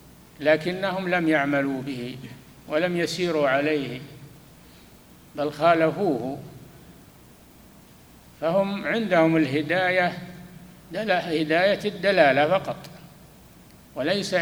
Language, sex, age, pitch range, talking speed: Arabic, male, 60-79, 140-185 Hz, 70 wpm